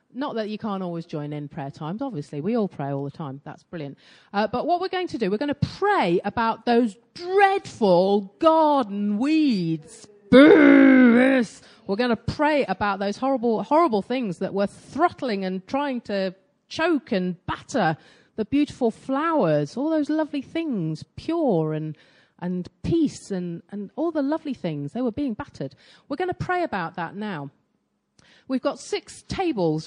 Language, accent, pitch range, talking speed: English, British, 180-265 Hz, 170 wpm